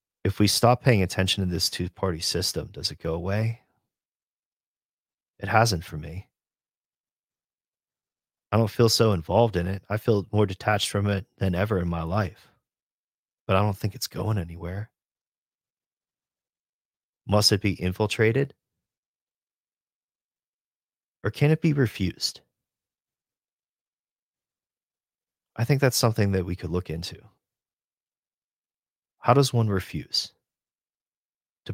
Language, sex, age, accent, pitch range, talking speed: English, male, 30-49, American, 90-115 Hz, 125 wpm